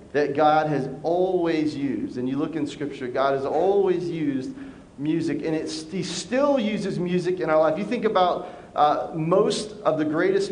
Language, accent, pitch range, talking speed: English, American, 155-200 Hz, 185 wpm